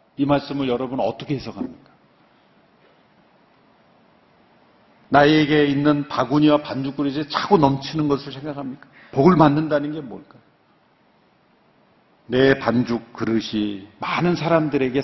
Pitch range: 125-150 Hz